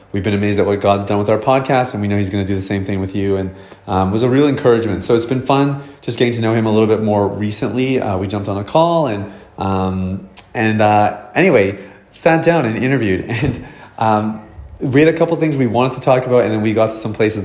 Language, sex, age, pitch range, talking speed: English, male, 30-49, 100-120 Hz, 265 wpm